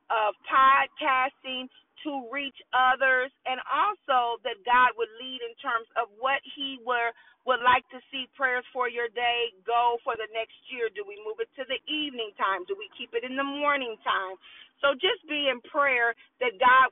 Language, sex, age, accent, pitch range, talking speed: English, female, 40-59, American, 235-300 Hz, 190 wpm